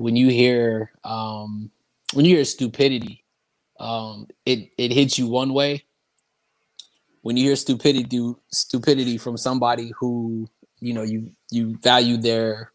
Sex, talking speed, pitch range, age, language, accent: male, 135 wpm, 120-140 Hz, 20-39, English, American